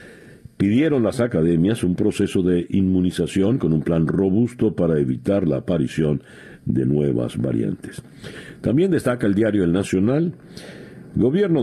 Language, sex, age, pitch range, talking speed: Spanish, male, 60-79, 80-110 Hz, 130 wpm